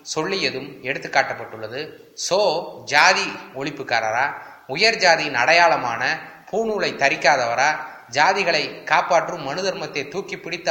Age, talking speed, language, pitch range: 20-39, 85 wpm, Tamil, 135-185 Hz